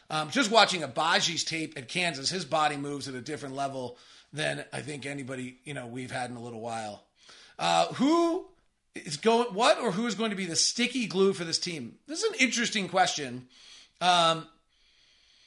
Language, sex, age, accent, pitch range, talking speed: English, male, 40-59, American, 160-210 Hz, 190 wpm